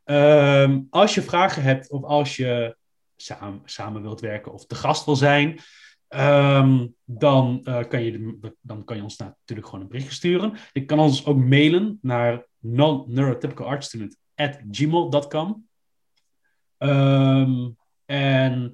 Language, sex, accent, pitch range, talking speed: English, male, Dutch, 115-150 Hz, 140 wpm